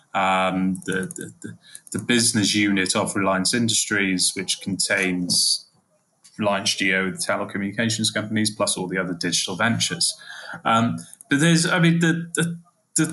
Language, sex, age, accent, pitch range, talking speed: English, male, 20-39, British, 100-135 Hz, 135 wpm